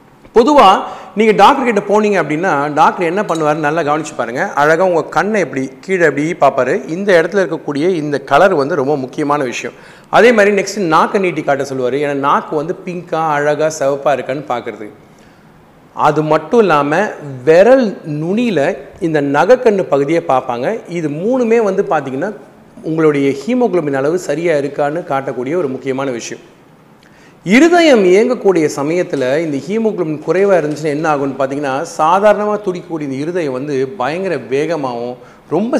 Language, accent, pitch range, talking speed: Tamil, native, 145-200 Hz, 140 wpm